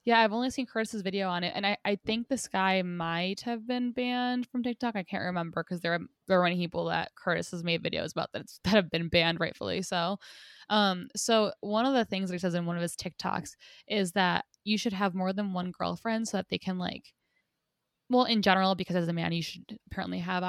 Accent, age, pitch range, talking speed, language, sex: American, 10-29, 175-210 Hz, 240 wpm, English, female